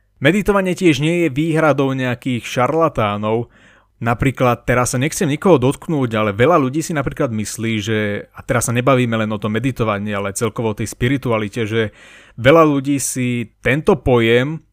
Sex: male